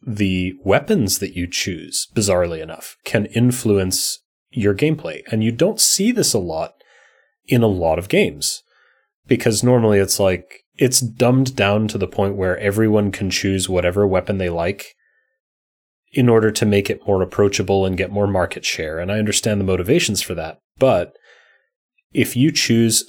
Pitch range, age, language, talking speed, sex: 95-115 Hz, 30-49, English, 165 wpm, male